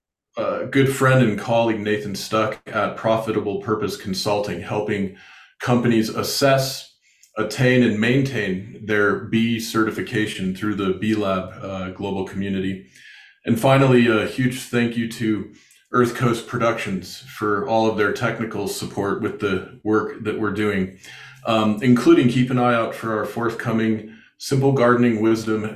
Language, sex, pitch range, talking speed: English, male, 105-125 Hz, 145 wpm